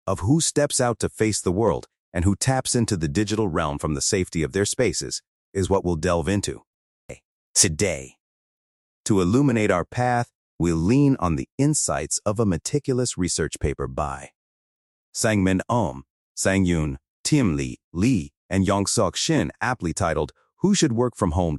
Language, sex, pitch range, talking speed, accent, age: English, male, 85-125 Hz, 160 wpm, American, 30-49